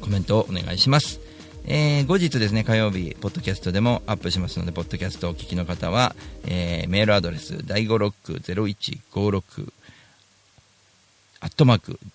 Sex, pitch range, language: male, 90-115 Hz, Japanese